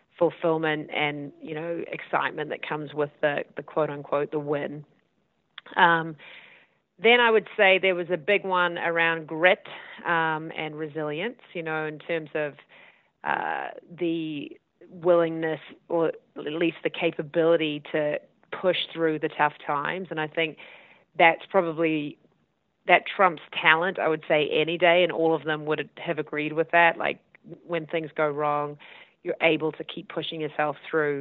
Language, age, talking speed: English, 30-49, 160 wpm